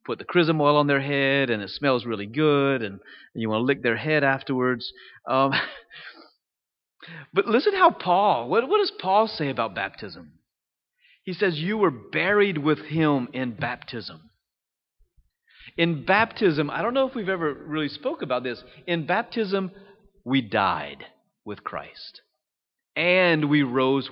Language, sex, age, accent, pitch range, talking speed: English, male, 30-49, American, 125-185 Hz, 155 wpm